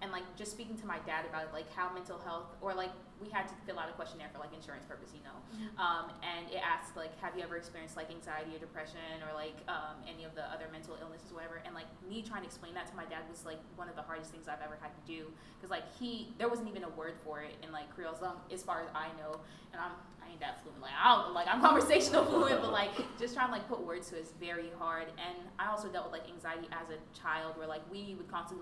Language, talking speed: English, 280 wpm